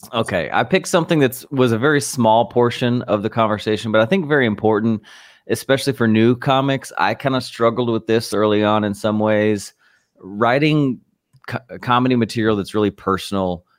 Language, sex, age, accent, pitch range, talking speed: English, male, 30-49, American, 100-125 Hz, 170 wpm